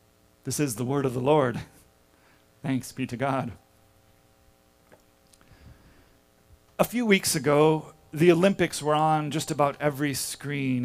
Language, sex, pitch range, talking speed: English, male, 130-170 Hz, 125 wpm